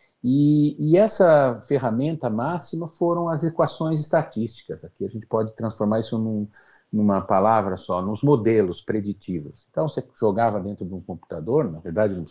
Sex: male